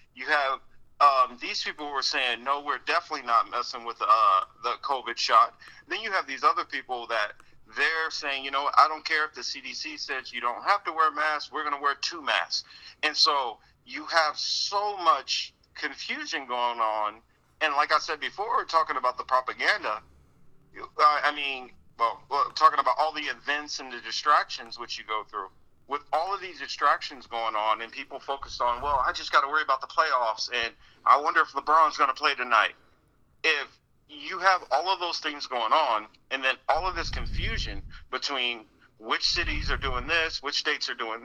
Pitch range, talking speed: 120-155 Hz, 195 wpm